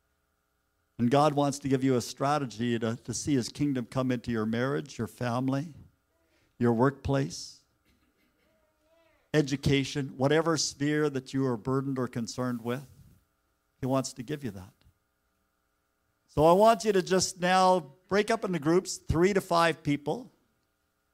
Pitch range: 115-165 Hz